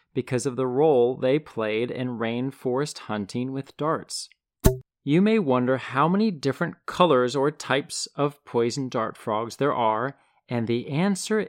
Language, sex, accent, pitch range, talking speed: English, male, American, 115-150 Hz, 150 wpm